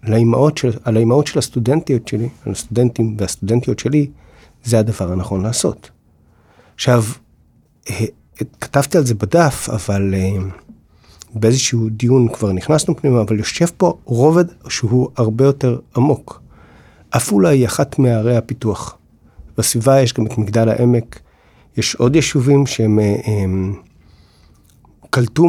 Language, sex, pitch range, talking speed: Hebrew, male, 105-130 Hz, 115 wpm